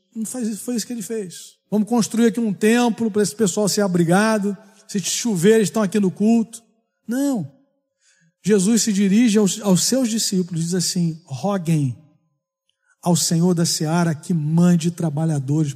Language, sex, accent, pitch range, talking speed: Portuguese, male, Brazilian, 170-230 Hz, 150 wpm